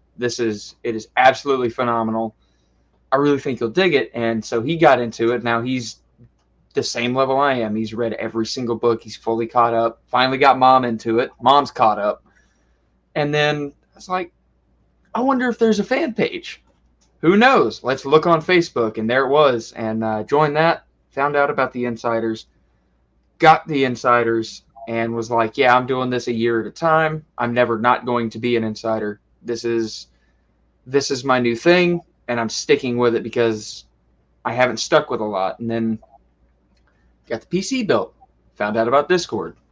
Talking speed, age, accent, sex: 190 wpm, 20-39, American, male